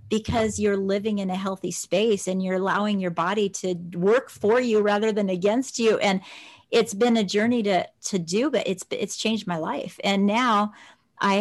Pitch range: 185-225 Hz